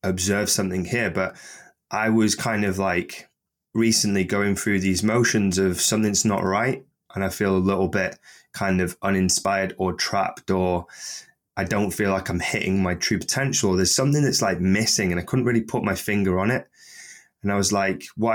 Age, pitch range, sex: 20-39, 95-110 Hz, male